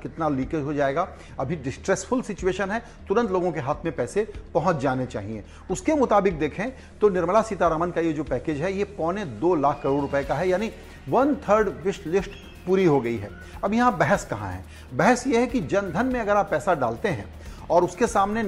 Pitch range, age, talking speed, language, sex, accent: 155-220 Hz, 40-59, 160 wpm, Hindi, male, native